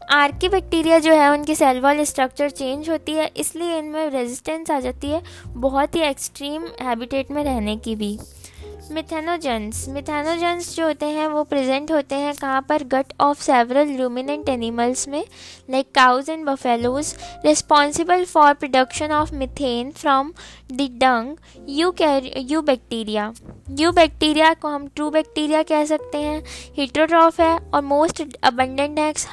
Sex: female